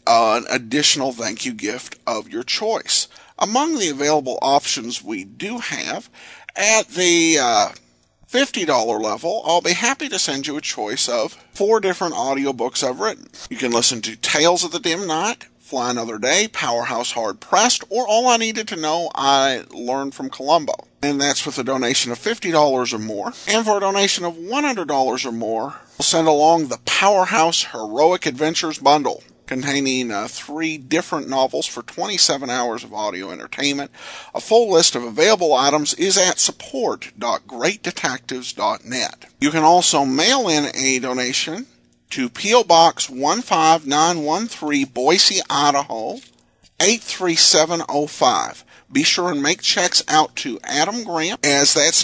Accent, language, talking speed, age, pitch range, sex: American, English, 150 wpm, 50-69, 130-180 Hz, male